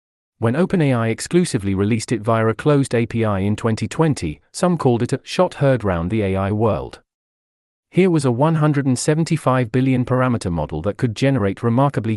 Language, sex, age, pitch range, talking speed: English, male, 40-59, 105-140 Hz, 160 wpm